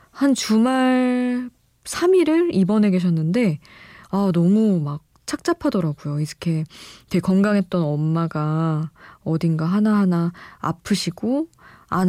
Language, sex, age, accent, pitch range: Korean, female, 20-39, native, 165-210 Hz